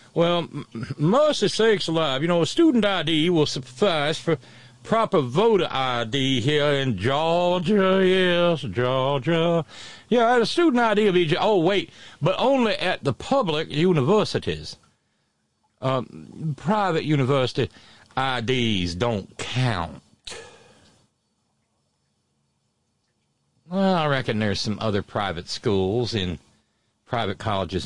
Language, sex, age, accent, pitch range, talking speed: English, male, 60-79, American, 100-155 Hz, 110 wpm